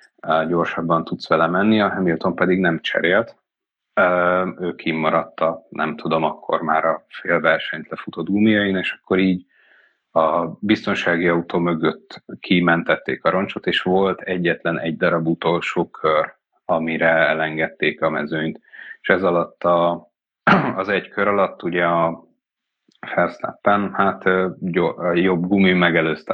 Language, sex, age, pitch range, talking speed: Hungarian, male, 30-49, 80-90 Hz, 125 wpm